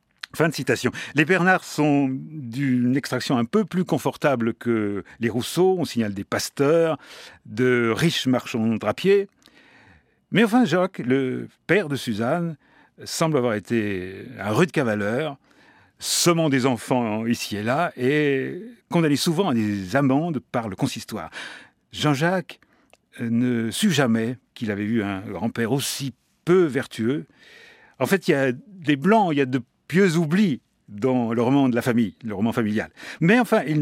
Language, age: French, 50-69